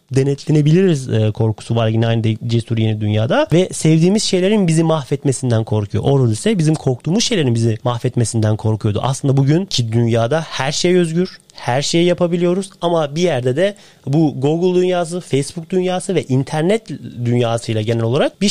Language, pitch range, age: Turkish, 120-165 Hz, 30-49